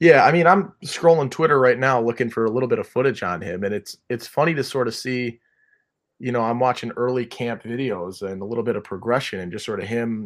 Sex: male